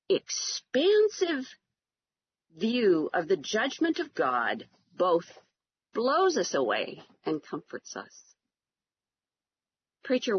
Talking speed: 85 wpm